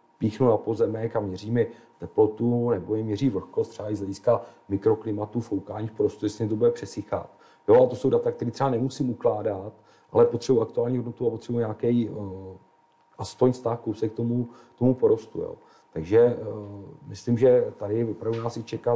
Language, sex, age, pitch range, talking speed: Czech, male, 40-59, 105-120 Hz, 165 wpm